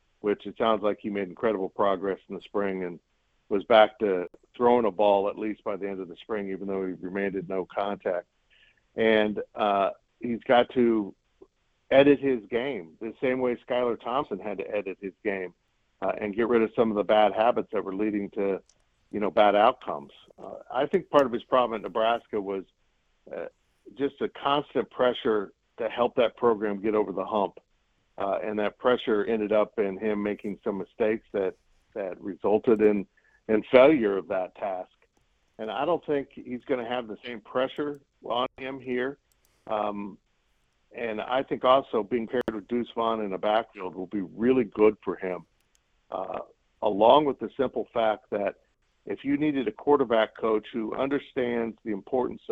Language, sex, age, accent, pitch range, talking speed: English, male, 50-69, American, 100-125 Hz, 185 wpm